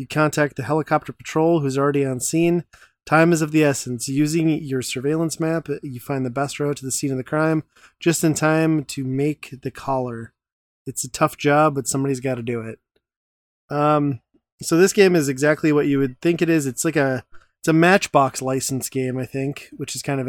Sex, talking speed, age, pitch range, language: male, 210 wpm, 20-39, 130-155 Hz, English